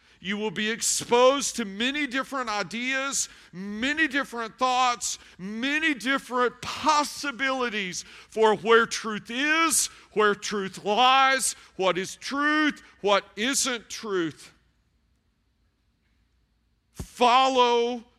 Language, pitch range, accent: English, 195-255 Hz, American